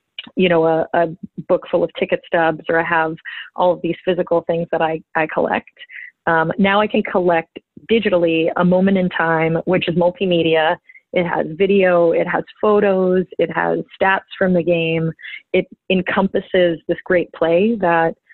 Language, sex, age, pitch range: English, female, 30-49, 165-190 Hz